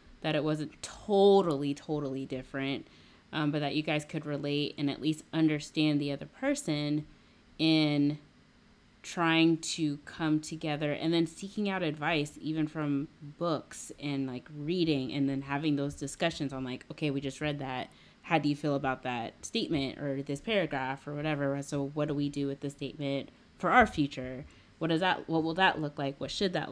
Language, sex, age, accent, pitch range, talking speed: English, female, 20-39, American, 140-160 Hz, 185 wpm